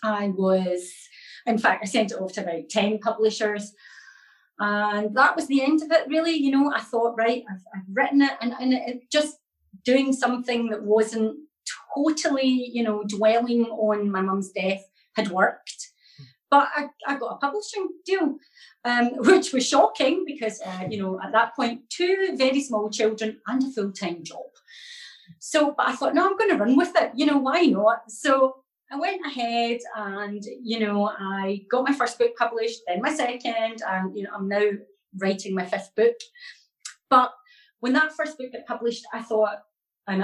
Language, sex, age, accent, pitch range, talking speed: English, female, 30-49, British, 205-280 Hz, 185 wpm